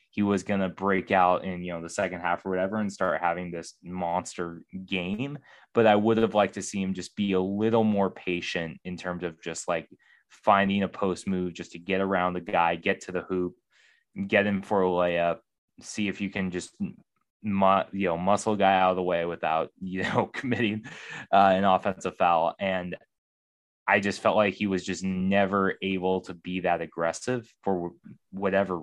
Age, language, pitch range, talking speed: 20-39, English, 85-100 Hz, 200 wpm